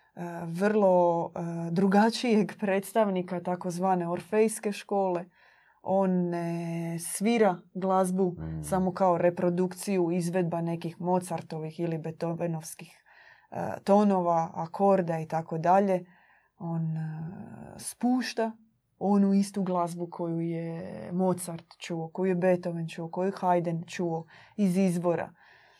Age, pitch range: 20-39, 170-200 Hz